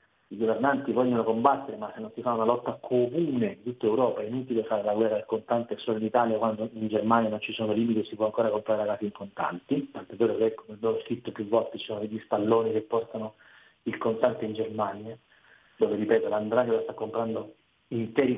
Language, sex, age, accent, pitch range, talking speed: Italian, male, 40-59, native, 110-140 Hz, 210 wpm